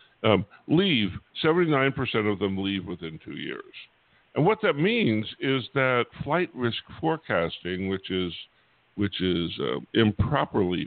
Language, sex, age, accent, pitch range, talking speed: English, female, 60-79, American, 90-115 Hz, 145 wpm